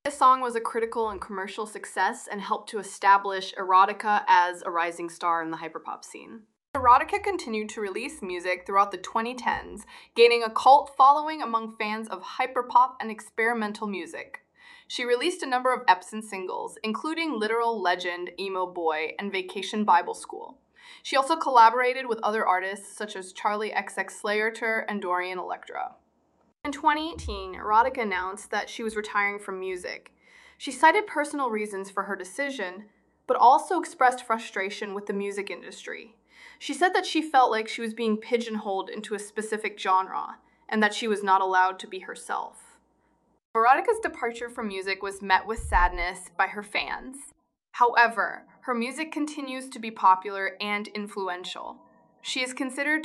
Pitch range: 195-265 Hz